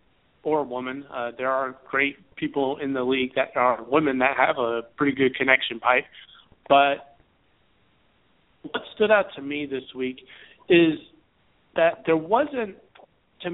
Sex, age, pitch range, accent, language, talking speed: male, 30-49, 130-170 Hz, American, English, 150 wpm